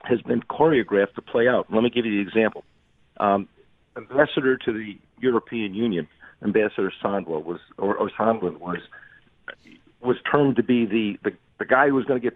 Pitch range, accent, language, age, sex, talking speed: 115-170 Hz, American, English, 50-69, male, 180 wpm